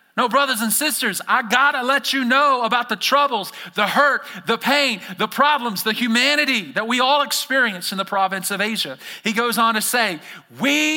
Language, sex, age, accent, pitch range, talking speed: English, male, 40-59, American, 180-285 Hz, 195 wpm